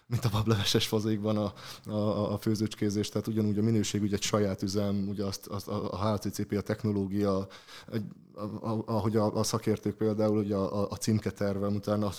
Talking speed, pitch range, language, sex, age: 190 wpm, 100-120 Hz, Hungarian, male, 20-39